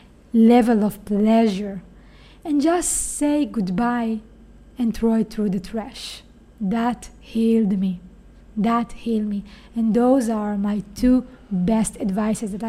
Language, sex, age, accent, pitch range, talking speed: English, female, 20-39, Italian, 210-250 Hz, 130 wpm